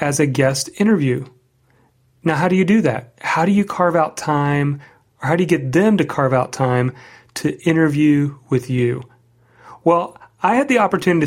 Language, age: English, 30-49